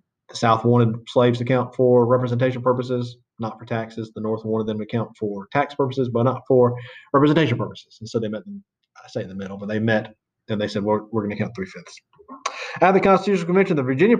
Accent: American